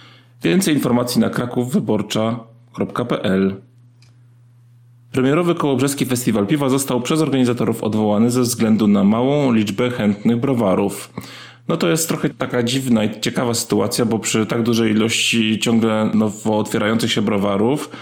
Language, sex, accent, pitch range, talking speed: Polish, male, native, 115-140 Hz, 125 wpm